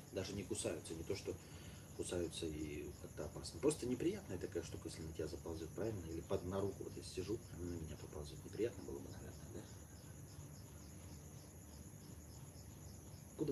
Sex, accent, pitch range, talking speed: male, native, 90-110 Hz, 160 wpm